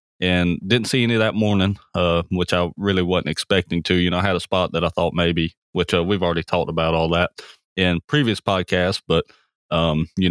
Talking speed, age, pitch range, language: 215 wpm, 30-49, 85-105 Hz, English